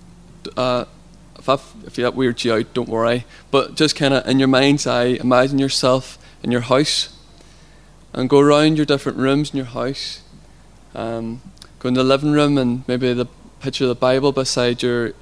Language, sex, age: English, male, 20-39